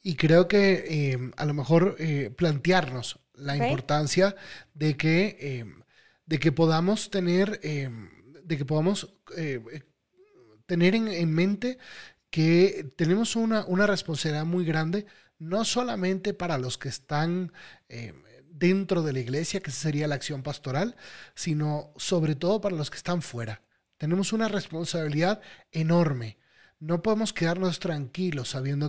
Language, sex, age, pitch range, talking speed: Spanish, male, 30-49, 145-180 Hz, 140 wpm